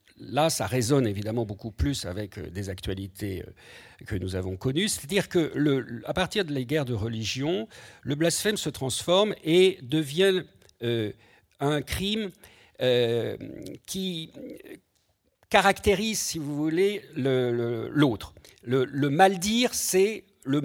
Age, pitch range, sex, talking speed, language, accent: 50-69, 110-155 Hz, male, 130 wpm, French, French